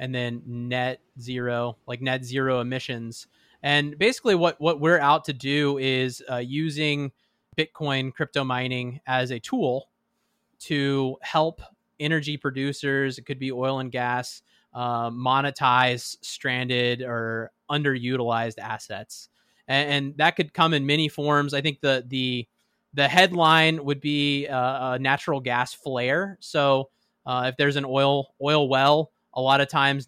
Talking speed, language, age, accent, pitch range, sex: 150 wpm, English, 20-39, American, 125-145 Hz, male